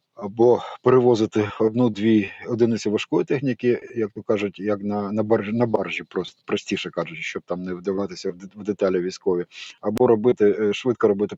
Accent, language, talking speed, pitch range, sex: native, Ukrainian, 150 wpm, 100-120 Hz, male